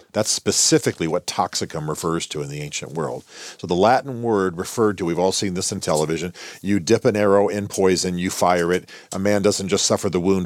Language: English